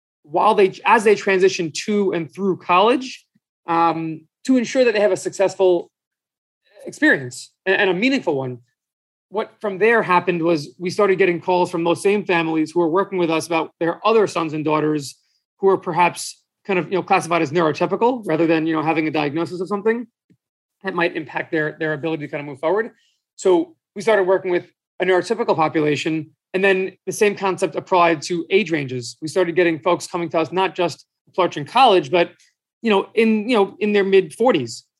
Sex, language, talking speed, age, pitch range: male, English, 190 wpm, 30-49, 165-205 Hz